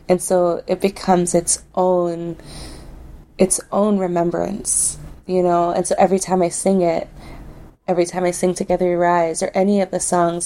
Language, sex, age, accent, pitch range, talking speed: English, female, 20-39, American, 165-185 Hz, 170 wpm